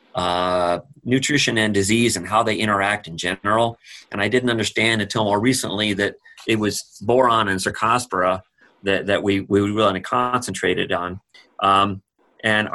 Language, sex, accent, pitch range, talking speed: English, male, American, 100-130 Hz, 155 wpm